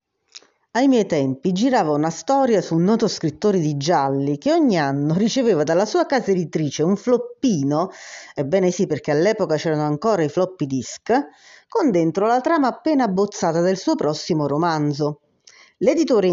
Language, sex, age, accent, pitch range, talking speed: Italian, female, 40-59, native, 160-245 Hz, 155 wpm